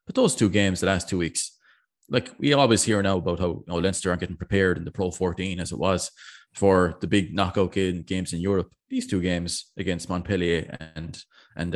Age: 20-39